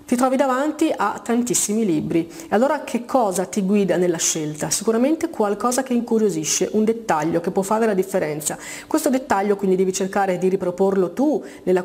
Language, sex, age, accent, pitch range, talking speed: Italian, female, 30-49, native, 180-240 Hz, 170 wpm